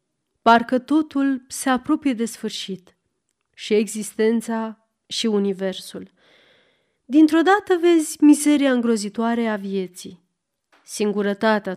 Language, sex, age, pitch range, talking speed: Romanian, female, 30-49, 200-270 Hz, 90 wpm